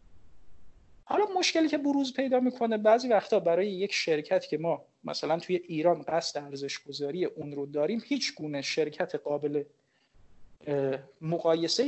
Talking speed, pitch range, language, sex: 135 wpm, 140-180 Hz, Persian, male